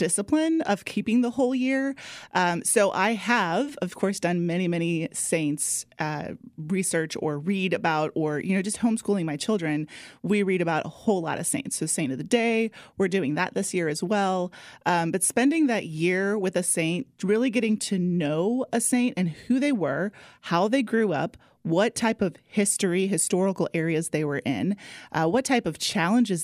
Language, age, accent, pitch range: English, 30-49, American, 165-230 Hz